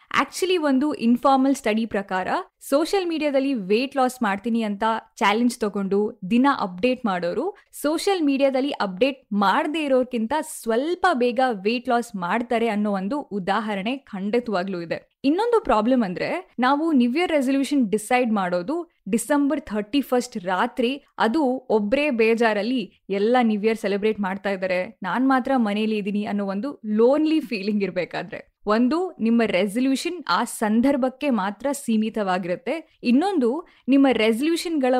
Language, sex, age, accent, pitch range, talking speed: Kannada, female, 20-39, native, 210-285 Hz, 125 wpm